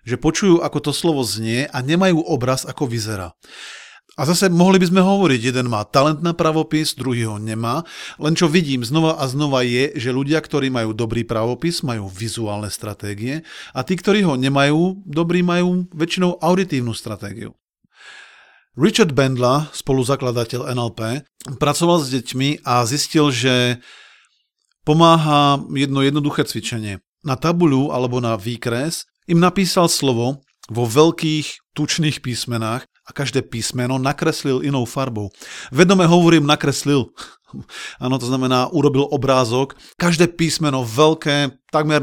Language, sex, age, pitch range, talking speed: Slovak, male, 40-59, 125-155 Hz, 135 wpm